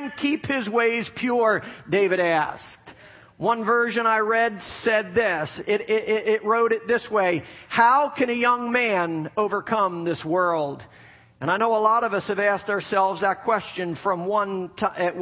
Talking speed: 165 wpm